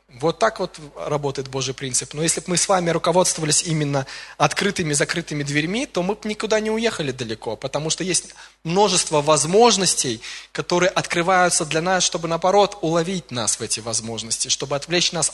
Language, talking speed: Russian, 170 wpm